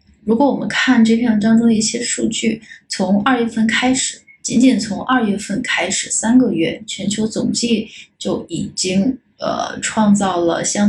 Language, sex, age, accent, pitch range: Chinese, female, 20-39, native, 195-230 Hz